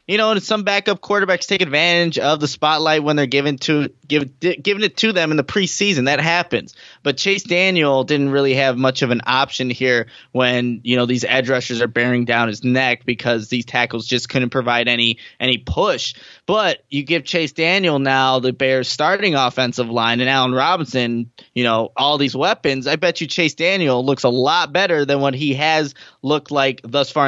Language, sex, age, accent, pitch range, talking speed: English, male, 20-39, American, 130-170 Hz, 205 wpm